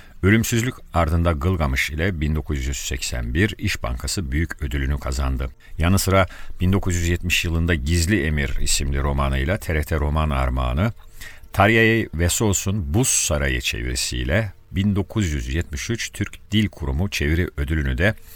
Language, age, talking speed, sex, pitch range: Turkish, 50-69, 110 wpm, male, 70-95 Hz